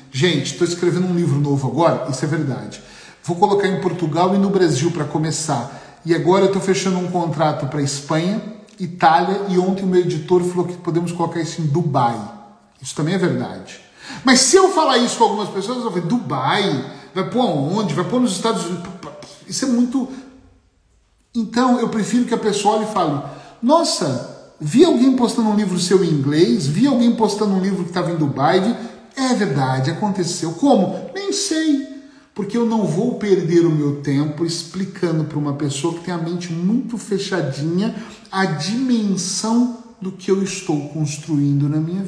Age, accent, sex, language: 40-59, Brazilian, male, Portuguese